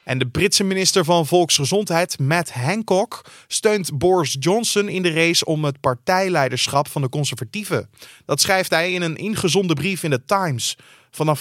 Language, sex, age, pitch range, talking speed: Dutch, male, 30-49, 135-175 Hz, 165 wpm